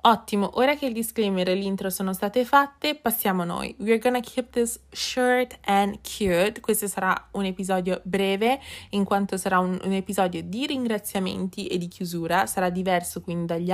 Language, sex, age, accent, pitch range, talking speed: Italian, female, 20-39, native, 175-220 Hz, 180 wpm